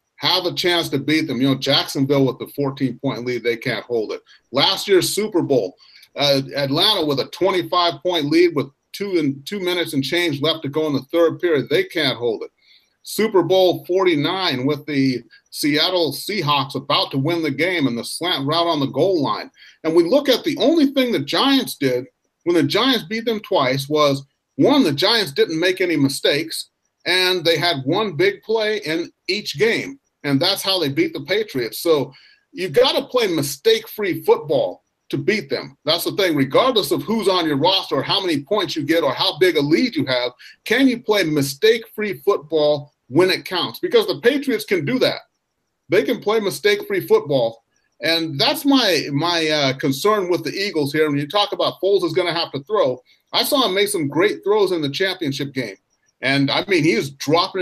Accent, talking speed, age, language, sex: American, 200 wpm, 40-59, English, male